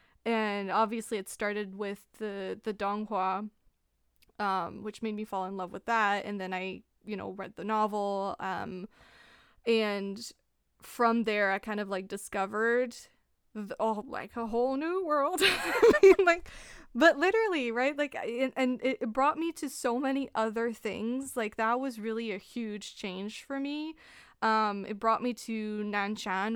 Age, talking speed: 20-39, 165 wpm